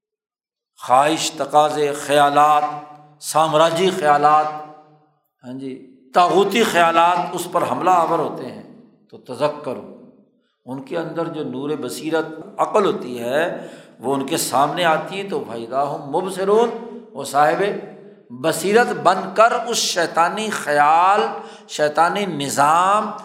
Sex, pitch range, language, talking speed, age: male, 150-215 Hz, Urdu, 120 wpm, 60-79